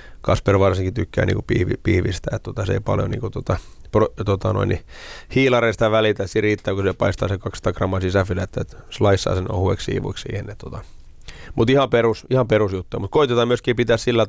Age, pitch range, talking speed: 30-49, 95-110 Hz, 170 wpm